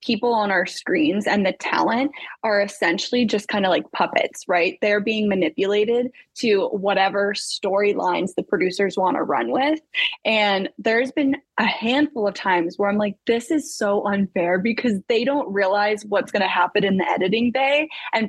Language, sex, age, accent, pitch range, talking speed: English, female, 10-29, American, 195-240 Hz, 175 wpm